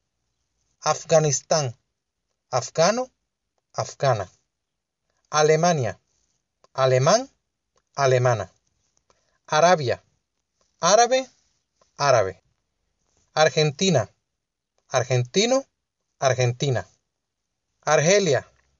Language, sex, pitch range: Spanish, male, 120-175 Hz